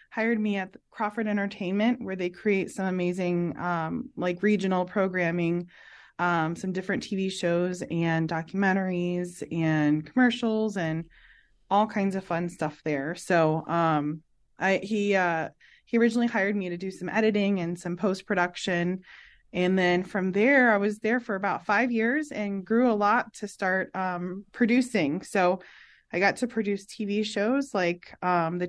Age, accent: 20-39, American